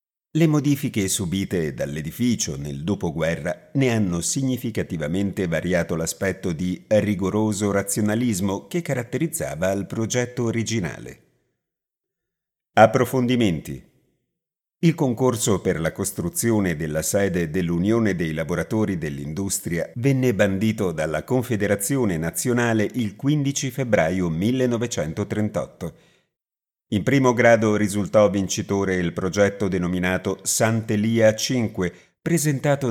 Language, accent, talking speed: Italian, native, 95 wpm